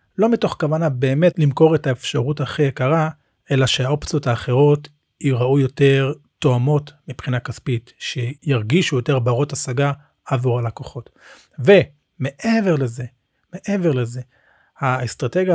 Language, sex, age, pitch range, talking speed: Hebrew, male, 40-59, 125-155 Hz, 110 wpm